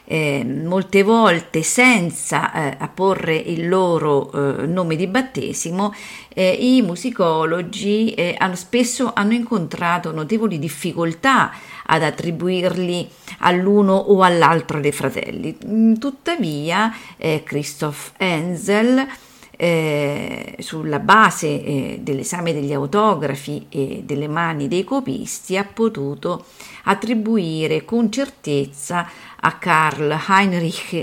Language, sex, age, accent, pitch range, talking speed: Italian, female, 50-69, native, 155-215 Hz, 105 wpm